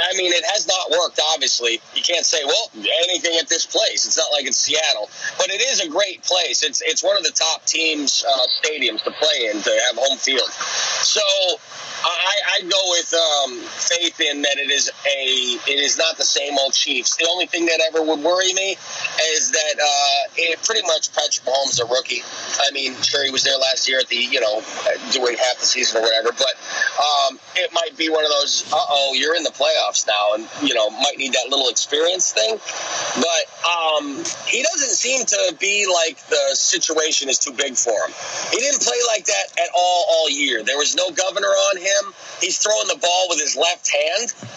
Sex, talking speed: male, 215 wpm